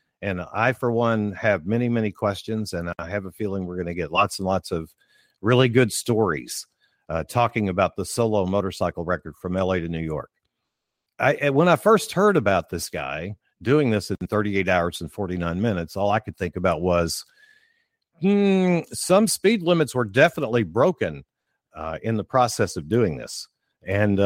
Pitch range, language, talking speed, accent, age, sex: 100-140 Hz, English, 180 wpm, American, 50-69, male